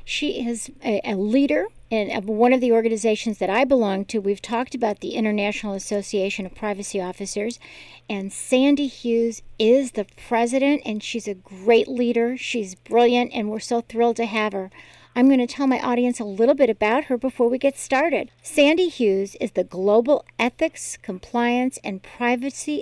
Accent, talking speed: American, 175 wpm